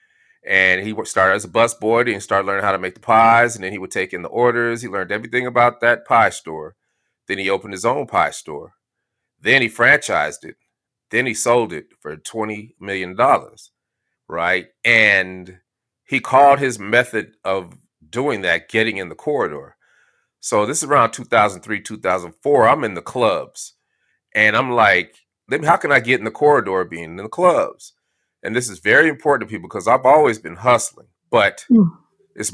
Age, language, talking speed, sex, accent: 30-49, English, 180 wpm, male, American